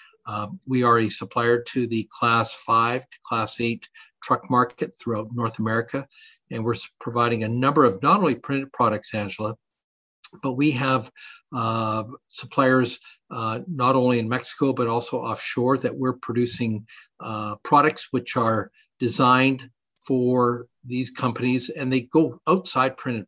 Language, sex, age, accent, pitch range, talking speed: English, male, 50-69, American, 110-130 Hz, 145 wpm